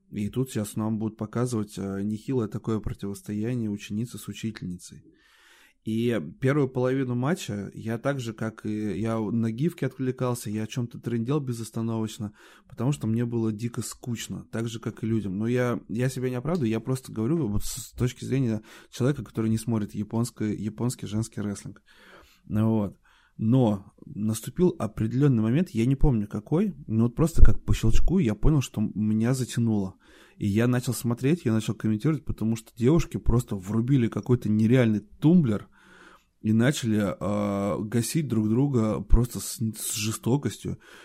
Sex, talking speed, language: male, 160 wpm, Russian